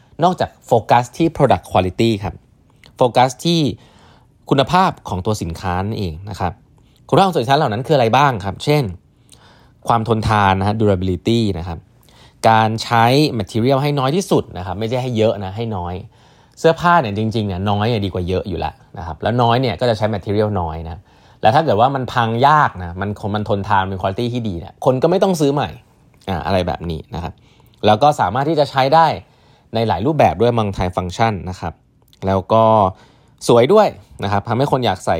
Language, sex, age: Thai, male, 20-39